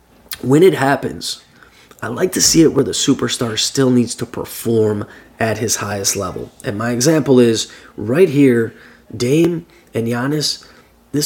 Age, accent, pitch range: 20-39, American, 110-135 Hz